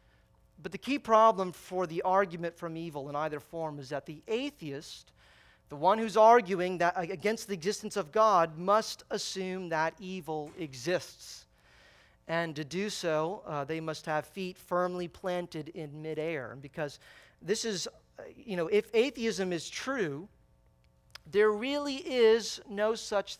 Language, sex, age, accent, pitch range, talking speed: English, male, 40-59, American, 165-225 Hz, 150 wpm